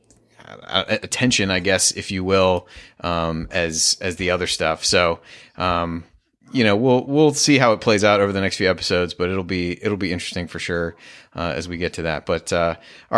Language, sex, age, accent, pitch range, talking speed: English, male, 30-49, American, 90-115 Hz, 205 wpm